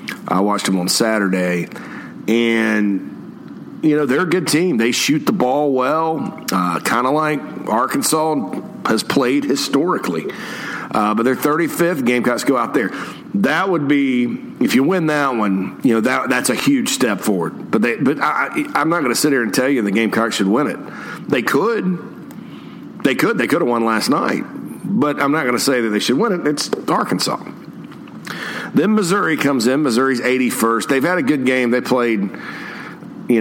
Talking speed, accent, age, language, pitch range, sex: 190 wpm, American, 50-69, English, 105-130 Hz, male